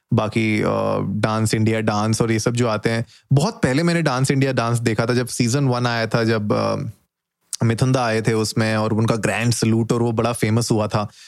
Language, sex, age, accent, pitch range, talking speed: Hindi, male, 20-39, native, 115-135 Hz, 205 wpm